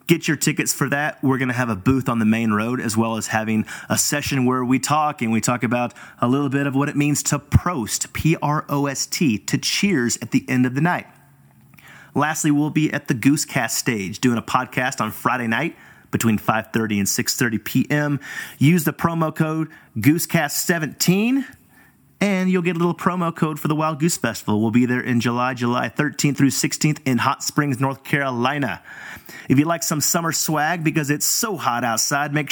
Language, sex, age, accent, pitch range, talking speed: English, male, 30-49, American, 125-160 Hz, 200 wpm